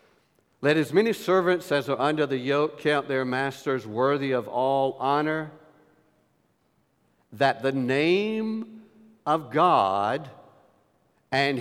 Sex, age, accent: male, 60-79, American